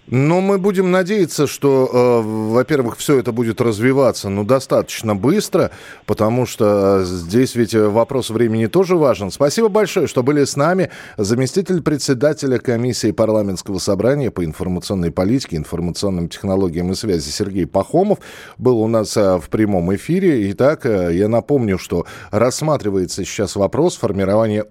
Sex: male